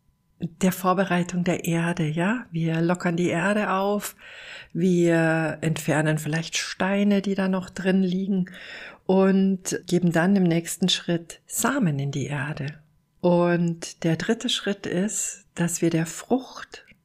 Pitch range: 170-200 Hz